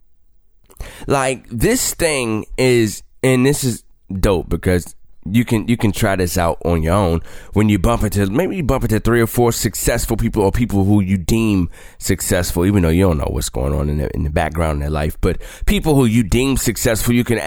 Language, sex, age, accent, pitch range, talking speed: English, male, 20-39, American, 90-120 Hz, 210 wpm